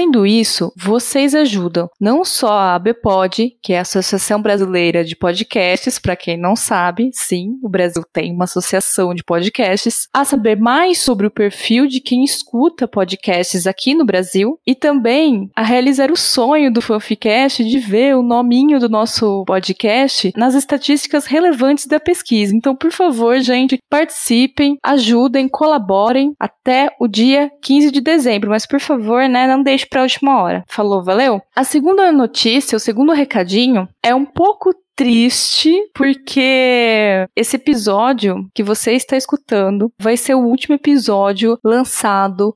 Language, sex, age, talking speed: Portuguese, female, 20-39, 150 wpm